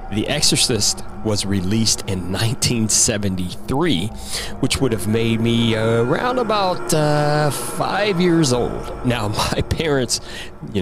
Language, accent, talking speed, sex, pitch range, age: English, American, 115 wpm, male, 95-120 Hz, 40-59